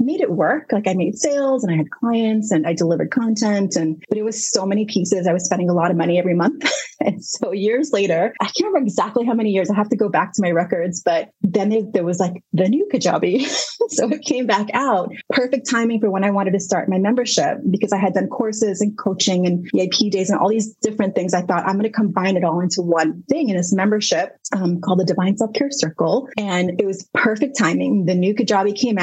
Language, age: English, 30-49